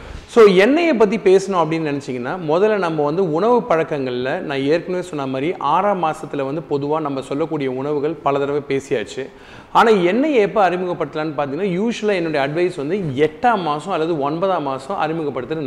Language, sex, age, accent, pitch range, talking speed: Tamil, male, 30-49, native, 140-200 Hz, 155 wpm